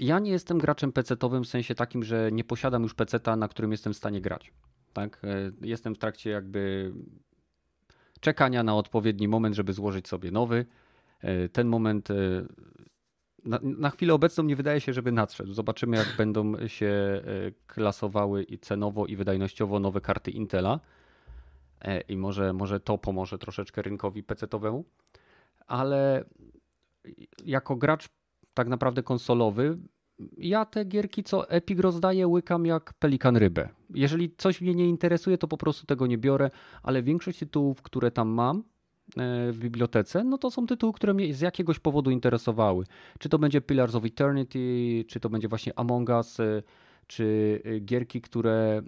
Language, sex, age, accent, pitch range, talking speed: Polish, male, 30-49, native, 105-145 Hz, 150 wpm